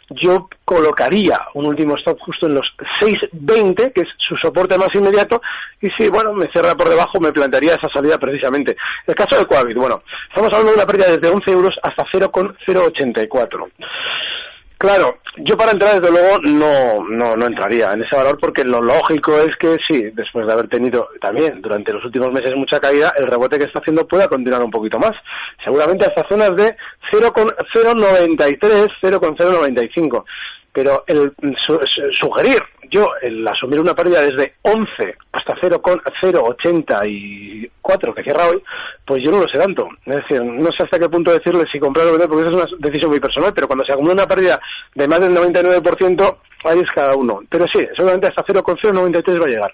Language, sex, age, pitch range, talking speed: Spanish, male, 40-59, 145-200 Hz, 190 wpm